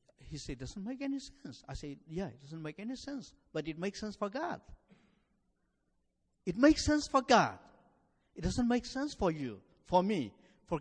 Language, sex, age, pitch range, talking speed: English, male, 50-69, 140-220 Hz, 190 wpm